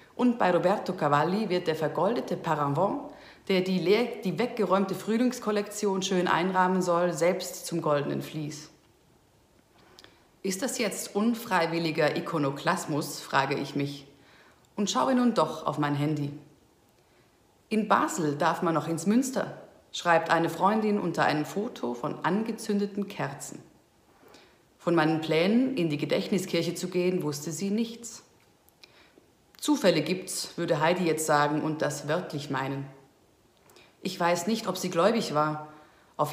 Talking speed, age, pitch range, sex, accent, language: 135 wpm, 40-59, 150-200 Hz, female, German, German